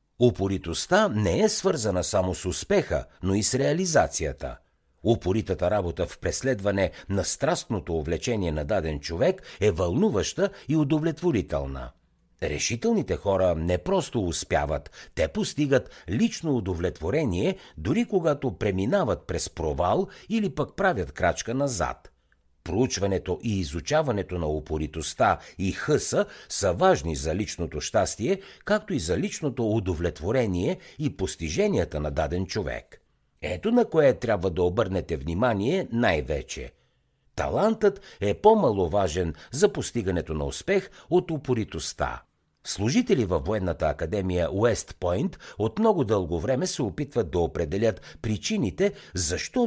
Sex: male